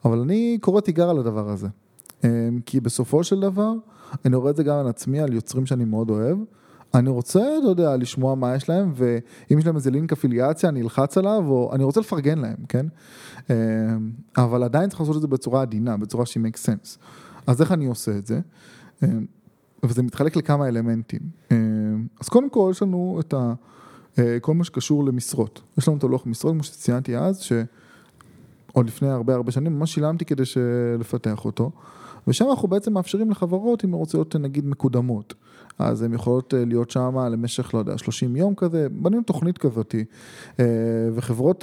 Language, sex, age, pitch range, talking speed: Hebrew, male, 20-39, 120-165 Hz, 180 wpm